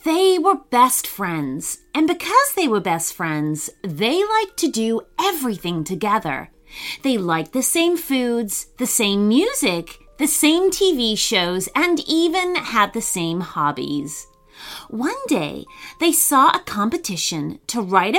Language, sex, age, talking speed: English, female, 30-49, 140 wpm